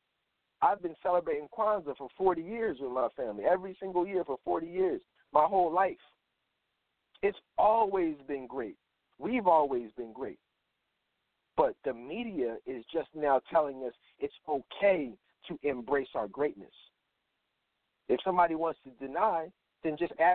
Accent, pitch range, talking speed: American, 165-215 Hz, 140 wpm